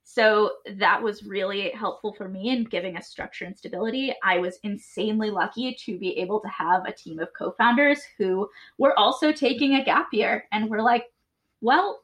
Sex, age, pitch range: female, 10-29, 215-275 Hz